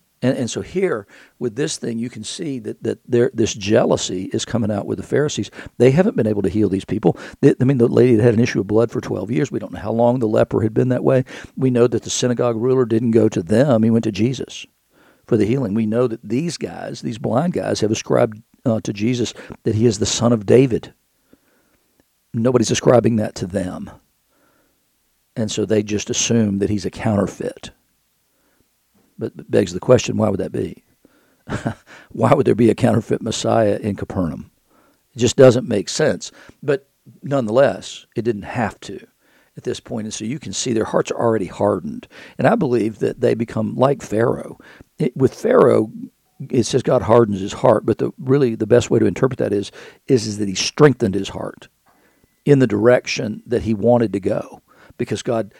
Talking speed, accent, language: 200 wpm, American, English